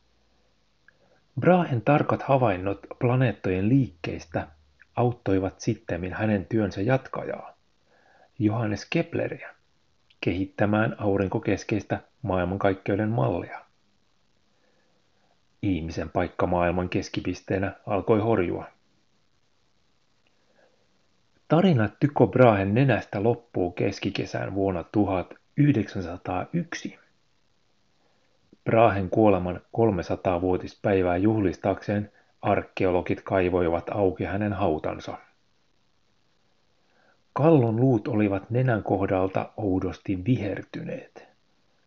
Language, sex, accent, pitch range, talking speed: Finnish, male, native, 95-115 Hz, 65 wpm